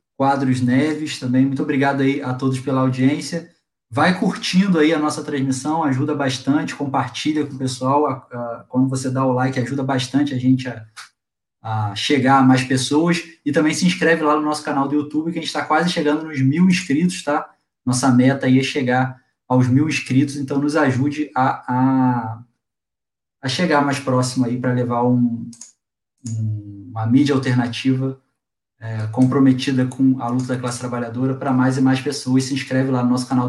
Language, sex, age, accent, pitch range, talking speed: Portuguese, male, 20-39, Brazilian, 125-150 Hz, 185 wpm